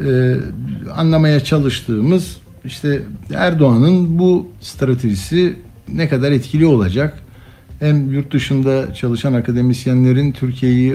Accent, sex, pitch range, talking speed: native, male, 110-135 Hz, 90 wpm